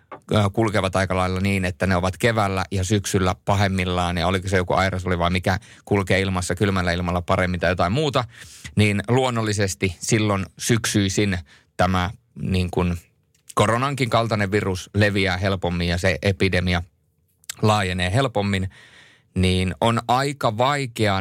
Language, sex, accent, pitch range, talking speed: Finnish, male, native, 90-110 Hz, 130 wpm